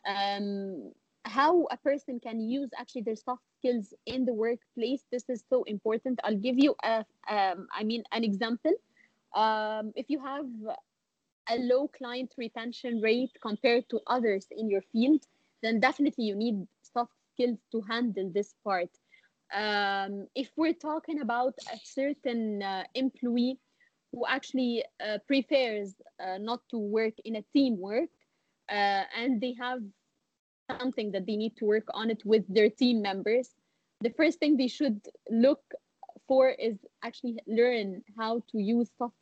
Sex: female